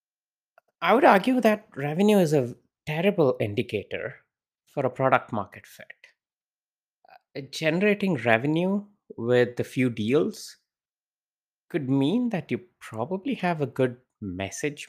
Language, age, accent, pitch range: English, 20-39, Indian, 110-145 Hz